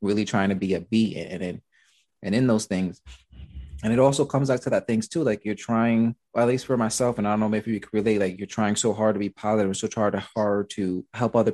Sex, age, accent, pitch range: male, 20-39, American, 95-115 Hz